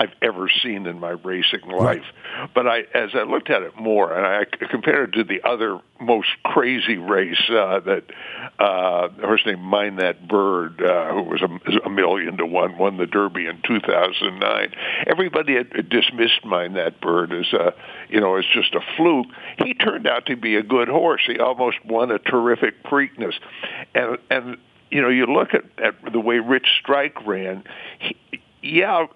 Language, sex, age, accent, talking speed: English, male, 60-79, American, 190 wpm